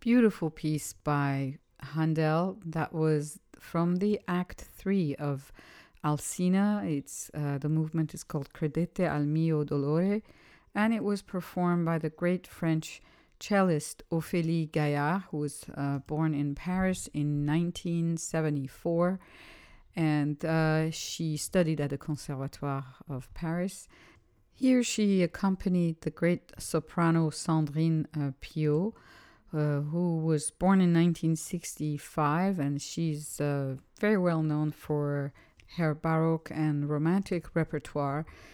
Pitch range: 150-180 Hz